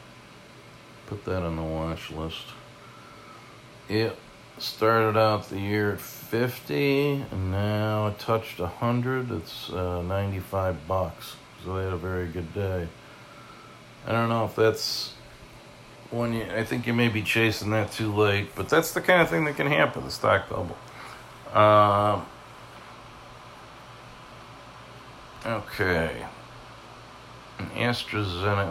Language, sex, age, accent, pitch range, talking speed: English, male, 40-59, American, 95-115 Hz, 125 wpm